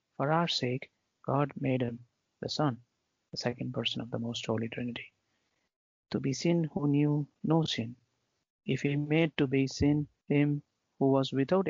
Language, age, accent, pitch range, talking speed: English, 50-69, Indian, 120-145 Hz, 170 wpm